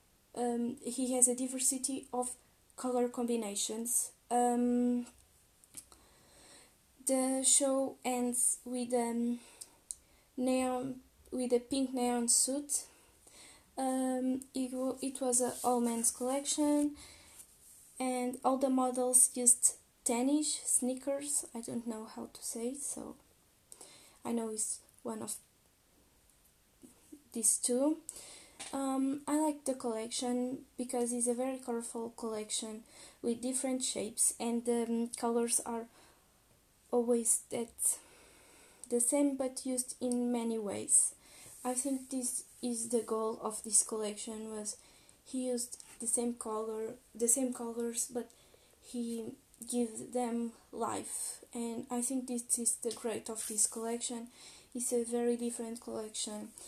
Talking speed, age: 125 wpm, 10-29